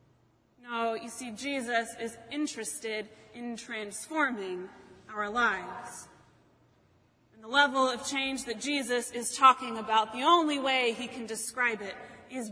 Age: 30-49